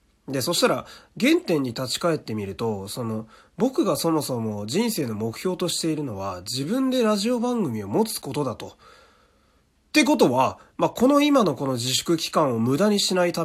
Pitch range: 120-175 Hz